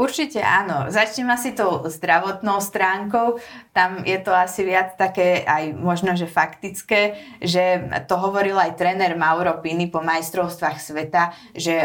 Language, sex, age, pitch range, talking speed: Slovak, female, 20-39, 160-190 Hz, 140 wpm